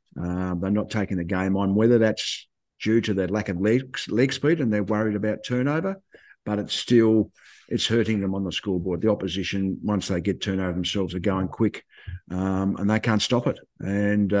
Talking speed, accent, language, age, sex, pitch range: 205 wpm, Australian, English, 50-69, male, 95-115 Hz